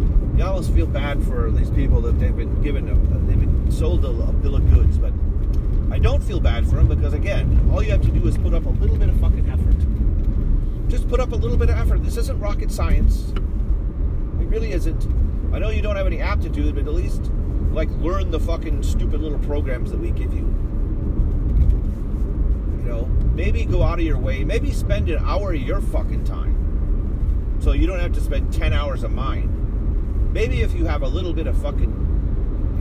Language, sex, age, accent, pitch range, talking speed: English, male, 40-59, American, 70-80 Hz, 210 wpm